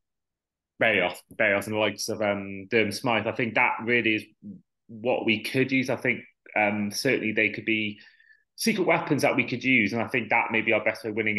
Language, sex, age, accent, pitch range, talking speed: English, male, 30-49, British, 110-130 Hz, 215 wpm